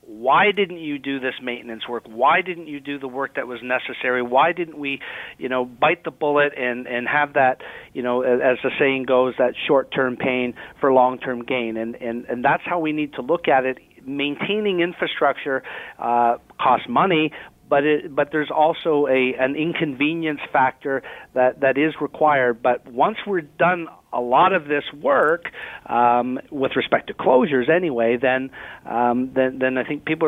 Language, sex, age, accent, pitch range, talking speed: English, male, 40-59, American, 125-155 Hz, 200 wpm